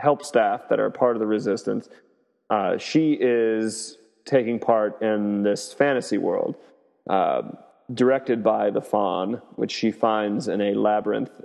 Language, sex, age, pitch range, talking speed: English, male, 30-49, 105-120 Hz, 145 wpm